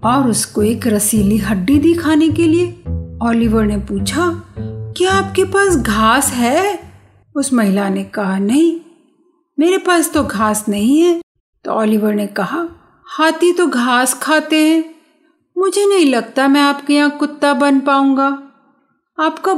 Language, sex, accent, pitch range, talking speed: Hindi, female, native, 220-320 Hz, 145 wpm